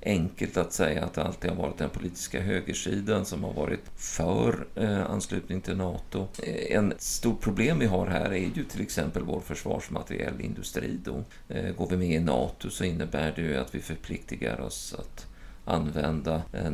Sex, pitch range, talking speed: male, 75-95 Hz, 170 wpm